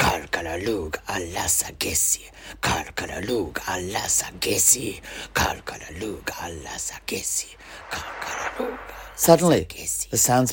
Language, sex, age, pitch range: English, male, 60-79, 85-115 Hz